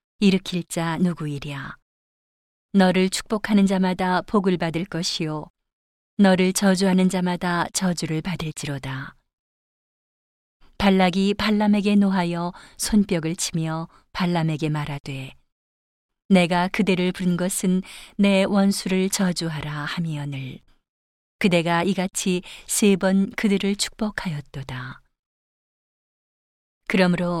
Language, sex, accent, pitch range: Korean, female, native, 165-200 Hz